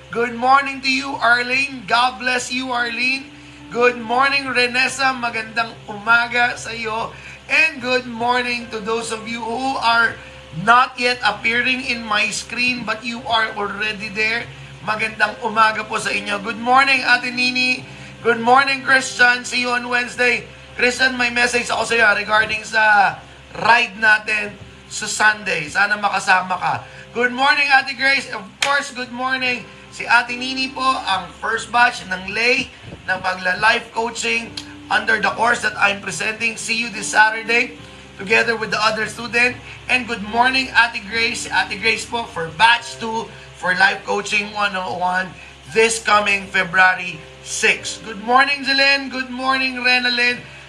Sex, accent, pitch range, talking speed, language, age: male, native, 210-250 Hz, 155 wpm, Filipino, 20-39